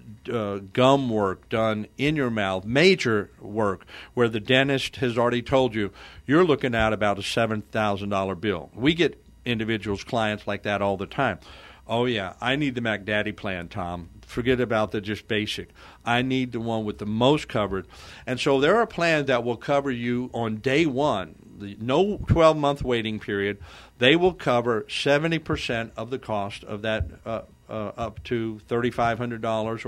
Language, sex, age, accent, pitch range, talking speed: English, male, 50-69, American, 105-130 Hz, 175 wpm